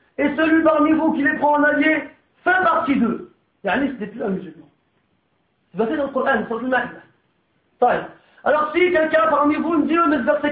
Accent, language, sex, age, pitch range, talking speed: French, French, male, 40-59, 235-305 Hz, 210 wpm